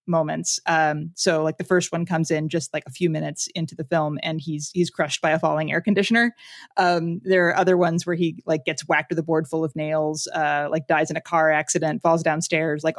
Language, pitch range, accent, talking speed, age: English, 155-180 Hz, American, 240 wpm, 20-39